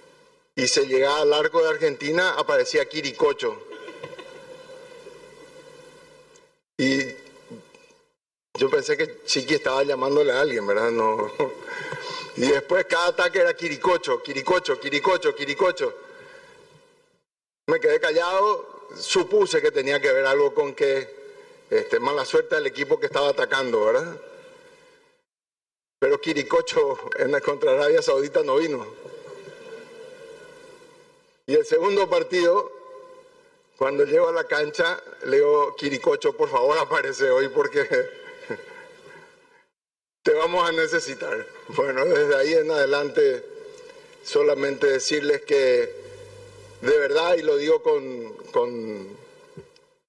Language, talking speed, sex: Spanish, 110 wpm, male